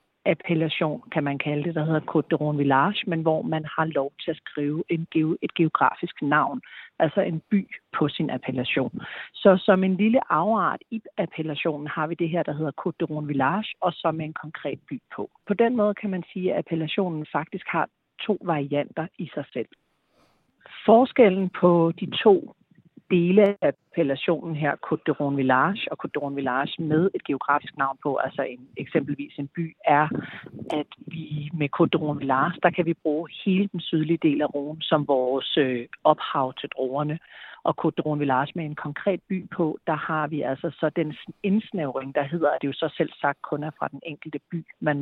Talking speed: 195 wpm